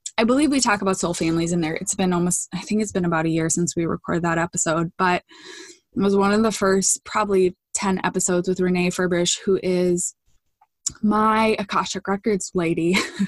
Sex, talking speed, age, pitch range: female, 195 wpm, 20-39, 185-220 Hz